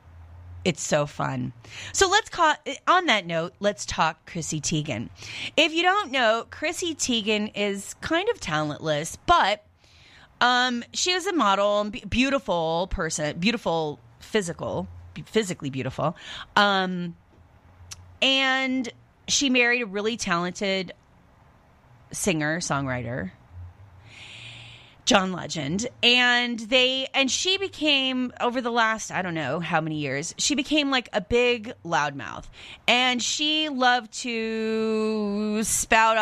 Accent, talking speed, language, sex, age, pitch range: American, 120 wpm, English, female, 30-49, 155-245 Hz